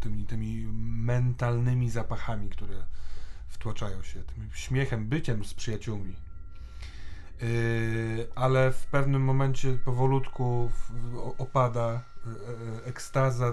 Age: 30-49